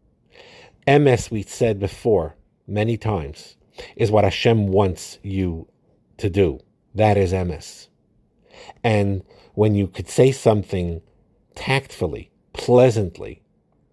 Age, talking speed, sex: 50-69, 105 wpm, male